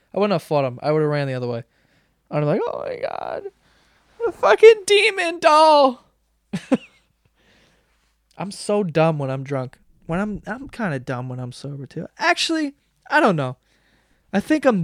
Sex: male